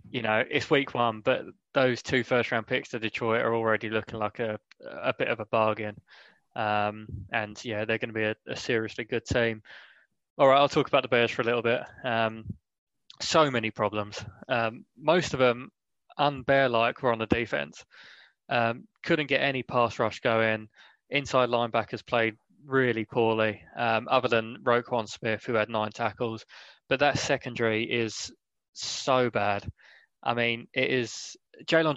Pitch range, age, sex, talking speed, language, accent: 110-130 Hz, 20-39, male, 170 wpm, English, British